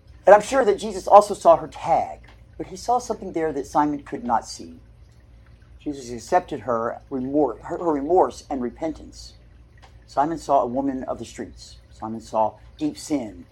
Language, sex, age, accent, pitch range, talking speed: English, male, 50-69, American, 135-205 Hz, 165 wpm